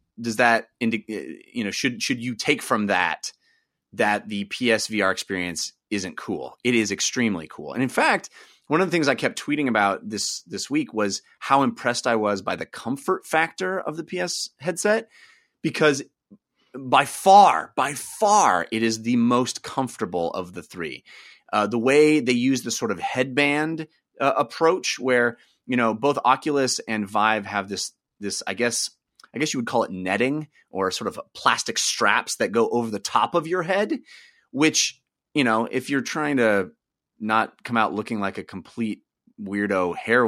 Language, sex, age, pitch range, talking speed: English, male, 30-49, 110-165 Hz, 180 wpm